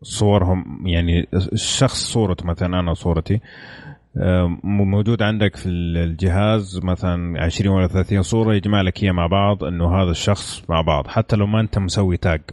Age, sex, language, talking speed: 30-49, male, Arabic, 150 wpm